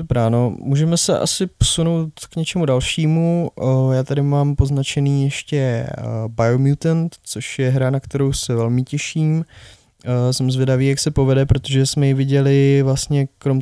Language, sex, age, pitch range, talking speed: Czech, male, 20-39, 125-135 Hz, 145 wpm